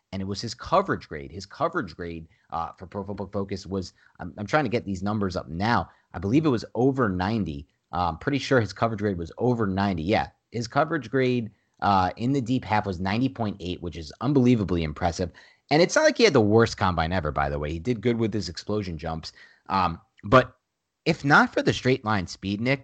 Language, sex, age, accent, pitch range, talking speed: English, male, 30-49, American, 95-130 Hz, 215 wpm